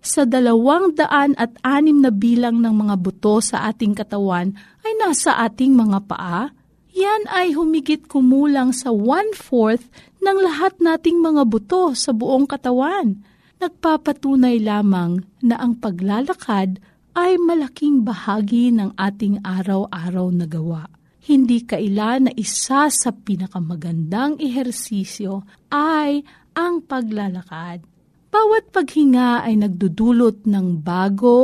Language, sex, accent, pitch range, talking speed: Filipino, female, native, 200-290 Hz, 115 wpm